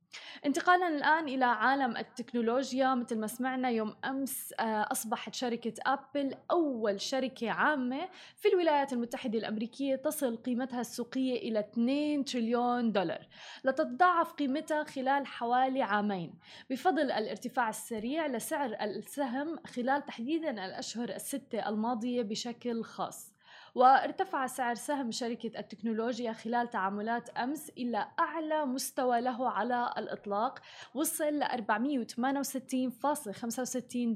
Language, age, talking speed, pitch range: Arabic, 20-39, 105 wpm, 230-280 Hz